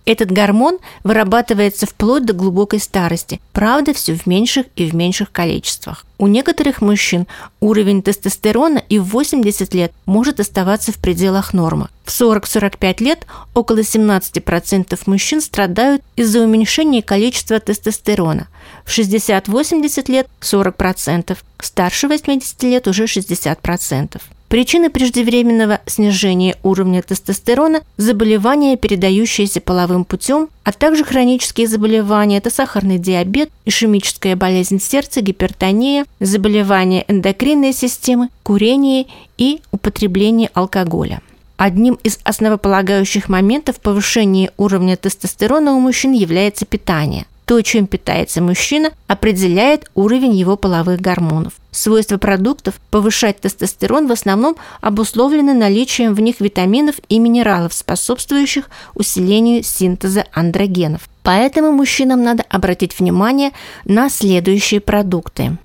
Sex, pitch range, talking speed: female, 190-245 Hz, 110 wpm